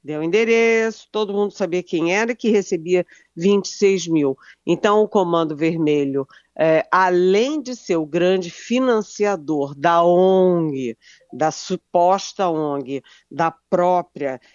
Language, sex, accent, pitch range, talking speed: Portuguese, female, Brazilian, 165-230 Hz, 125 wpm